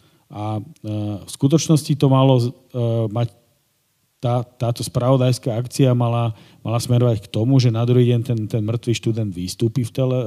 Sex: male